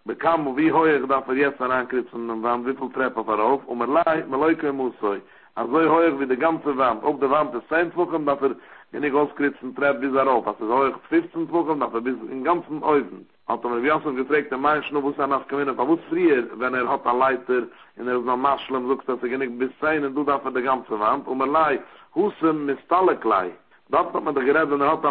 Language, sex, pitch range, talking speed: English, male, 130-155 Hz, 160 wpm